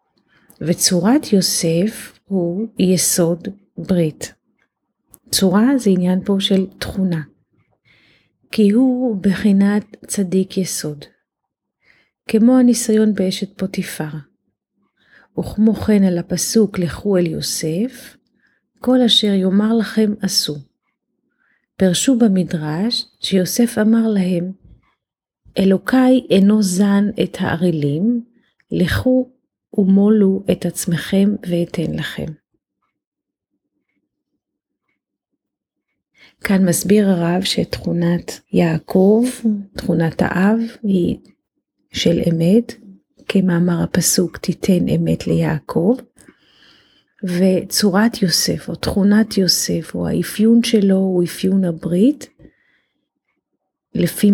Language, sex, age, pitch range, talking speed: Hebrew, female, 30-49, 175-215 Hz, 85 wpm